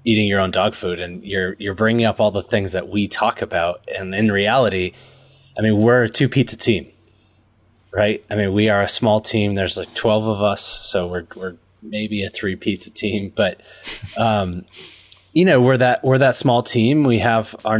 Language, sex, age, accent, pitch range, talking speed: English, male, 20-39, American, 95-120 Hz, 205 wpm